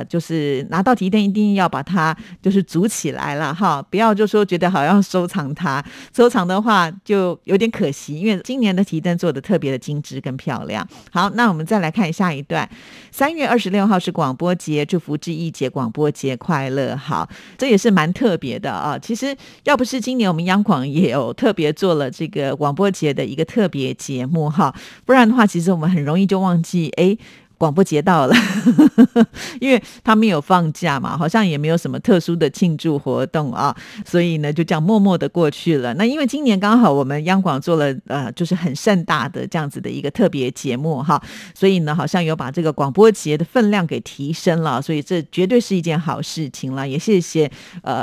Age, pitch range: 50-69, 150-205 Hz